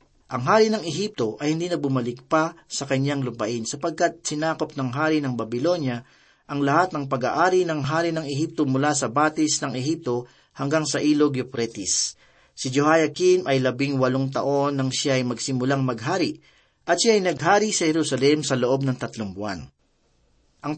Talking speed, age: 170 wpm, 40-59